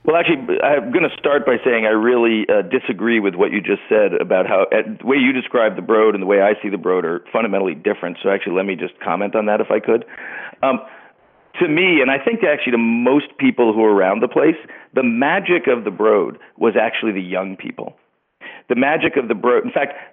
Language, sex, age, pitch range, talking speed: English, male, 50-69, 105-135 Hz, 235 wpm